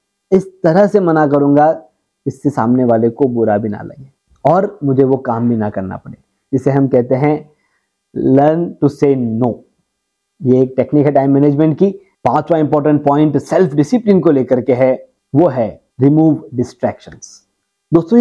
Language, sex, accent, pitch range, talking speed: Hindi, male, native, 130-180 Hz, 165 wpm